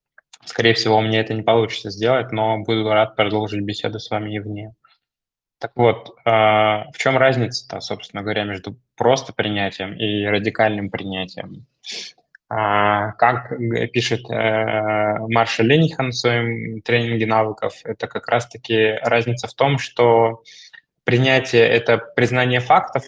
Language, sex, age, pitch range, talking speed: Russian, male, 20-39, 110-120 Hz, 125 wpm